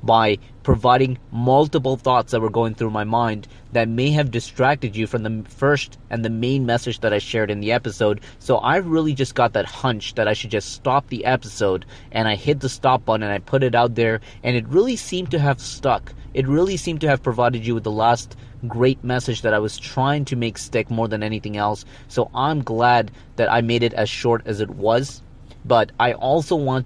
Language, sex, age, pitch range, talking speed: English, male, 30-49, 110-130 Hz, 225 wpm